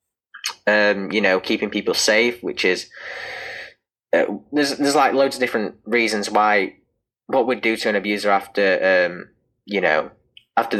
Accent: British